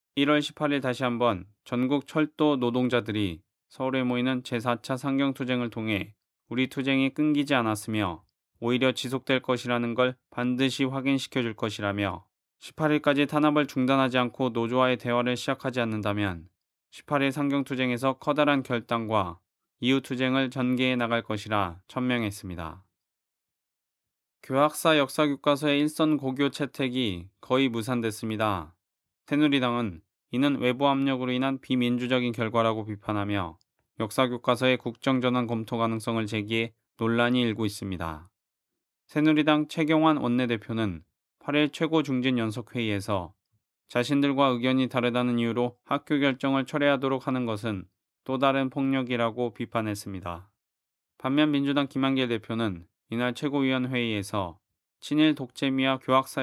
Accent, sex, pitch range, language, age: native, male, 110-135 Hz, Korean, 20-39